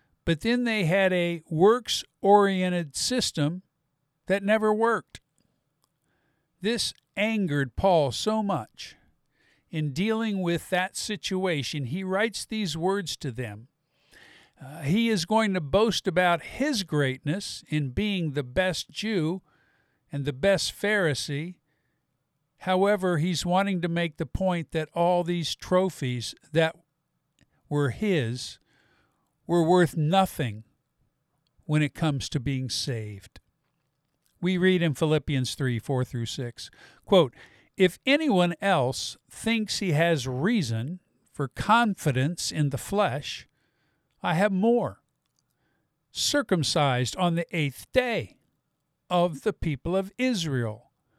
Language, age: English, 50-69